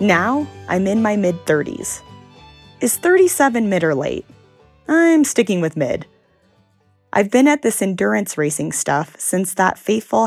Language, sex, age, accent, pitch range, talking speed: English, female, 30-49, American, 165-205 Hz, 140 wpm